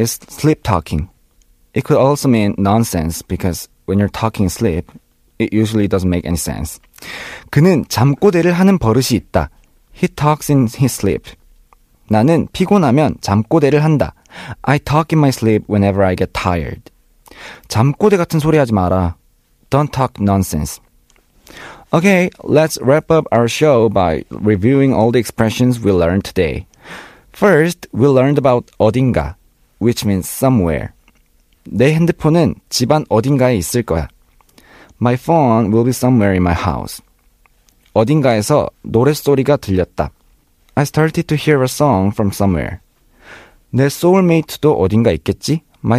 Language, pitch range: Korean, 100-145 Hz